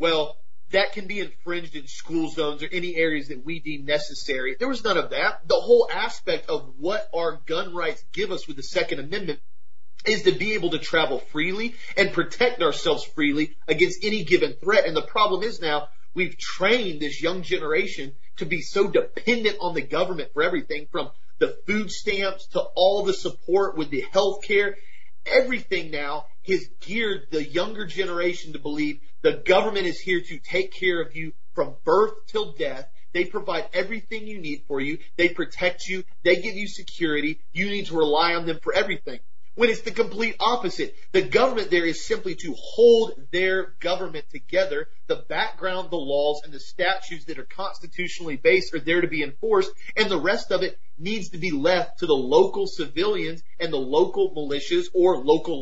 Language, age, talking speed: English, 30-49, 190 wpm